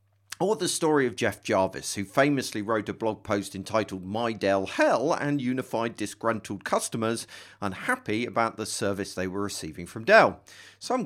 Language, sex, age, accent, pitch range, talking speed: English, male, 50-69, British, 100-145 Hz, 165 wpm